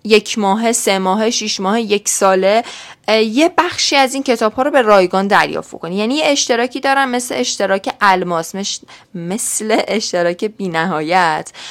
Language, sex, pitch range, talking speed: Persian, female, 185-260 Hz, 150 wpm